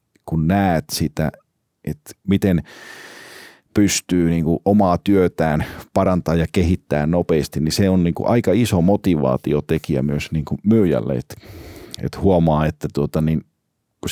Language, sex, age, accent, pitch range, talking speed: Finnish, male, 40-59, native, 75-95 Hz, 130 wpm